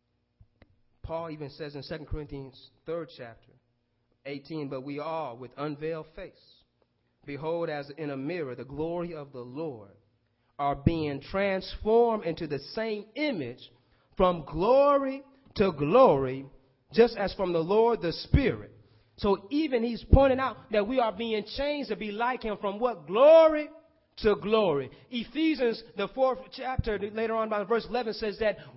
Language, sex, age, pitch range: English, male, 30-49, 155-240 Hz